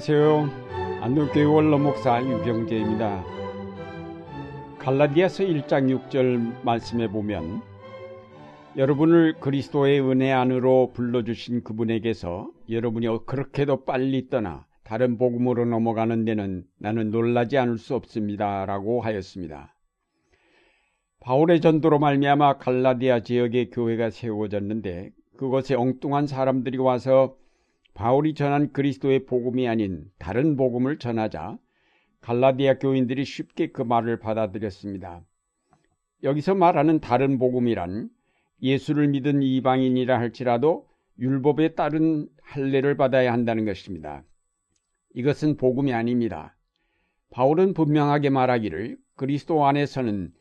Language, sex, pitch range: Korean, male, 110-140 Hz